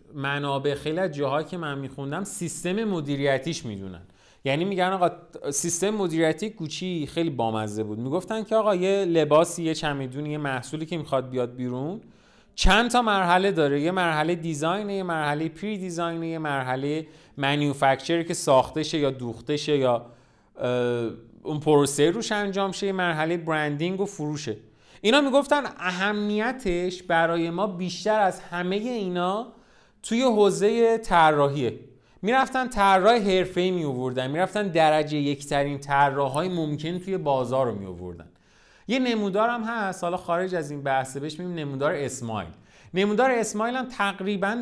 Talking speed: 135 wpm